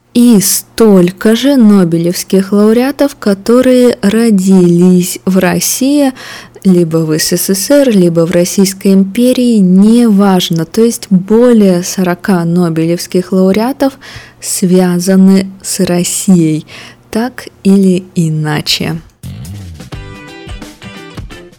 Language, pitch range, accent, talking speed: Russian, 175-220 Hz, native, 80 wpm